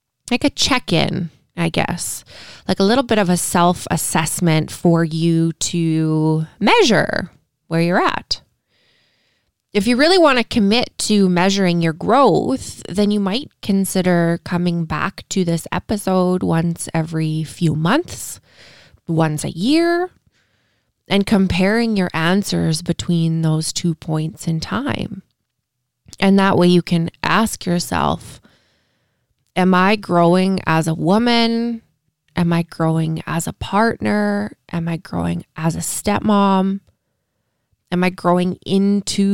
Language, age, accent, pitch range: English, 20-39, American, 160-195 Hz